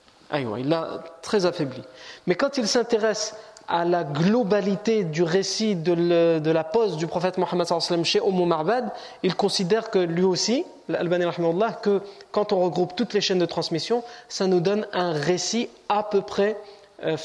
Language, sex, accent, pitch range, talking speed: French, male, French, 155-210 Hz, 170 wpm